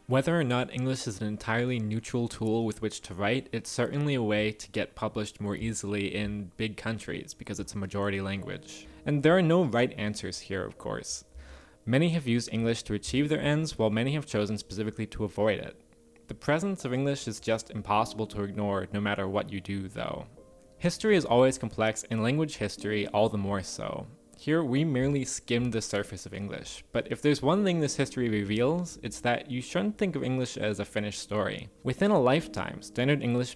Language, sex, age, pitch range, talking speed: English, male, 20-39, 105-130 Hz, 200 wpm